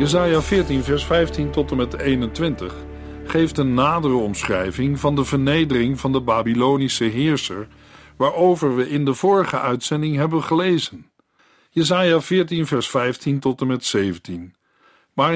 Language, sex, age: Dutch, male, 50-69